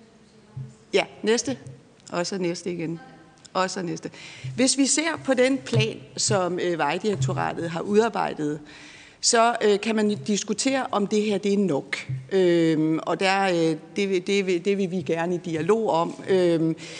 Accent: native